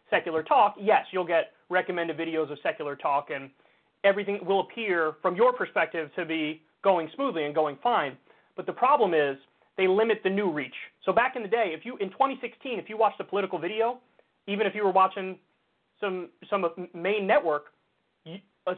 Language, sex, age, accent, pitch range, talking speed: English, male, 30-49, American, 180-245 Hz, 185 wpm